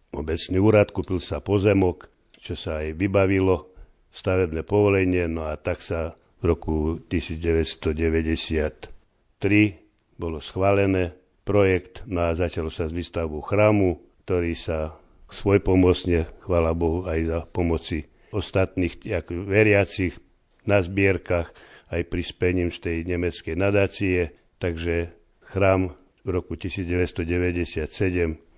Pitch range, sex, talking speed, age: 85-95 Hz, male, 105 wpm, 60-79